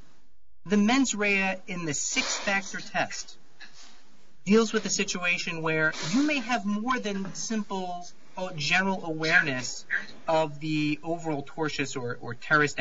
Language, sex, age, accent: English, male, 40-59, American